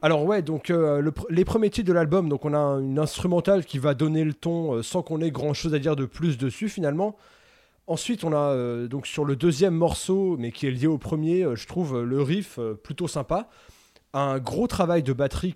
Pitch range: 140-185 Hz